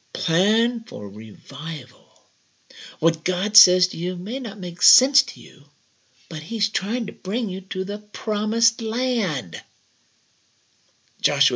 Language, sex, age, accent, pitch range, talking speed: English, male, 50-69, American, 130-210 Hz, 130 wpm